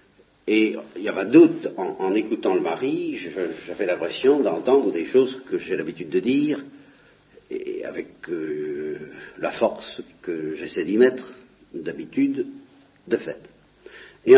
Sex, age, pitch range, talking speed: male, 60-79, 280-375 Hz, 140 wpm